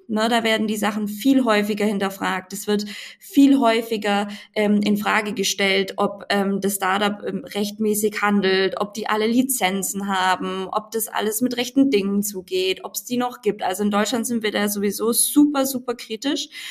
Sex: female